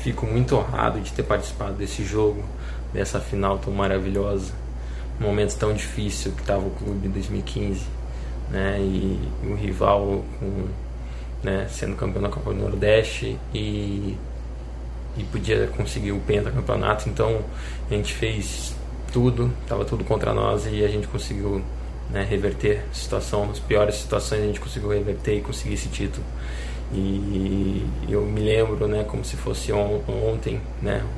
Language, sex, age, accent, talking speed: Portuguese, male, 20-39, Brazilian, 150 wpm